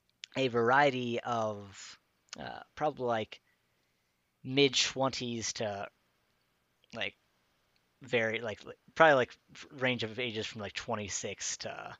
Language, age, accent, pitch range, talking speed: English, 30-49, American, 100-130 Hz, 105 wpm